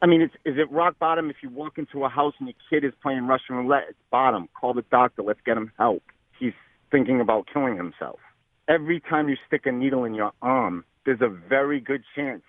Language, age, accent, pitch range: English, 50-69, American, 105-135 Hz